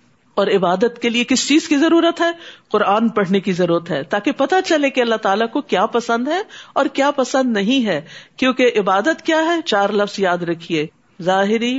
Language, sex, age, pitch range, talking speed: Urdu, female, 50-69, 190-285 Hz, 195 wpm